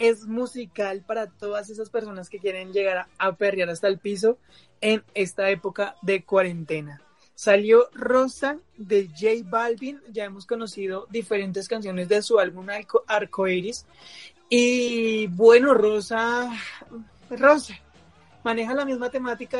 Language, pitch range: Spanish, 190-230 Hz